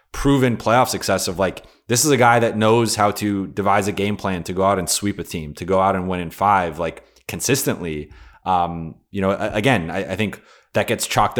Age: 30-49